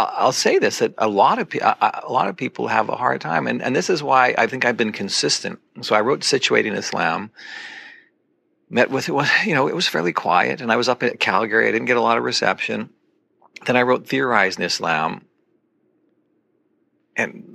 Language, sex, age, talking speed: English, male, 50-69, 200 wpm